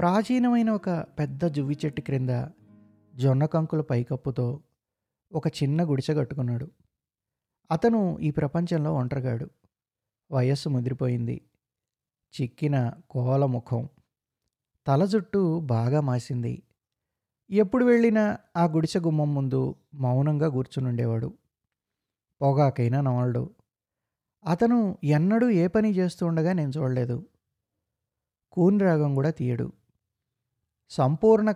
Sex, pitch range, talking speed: male, 125-165 Hz, 85 wpm